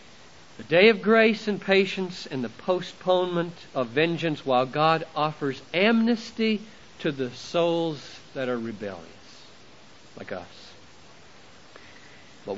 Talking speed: 115 wpm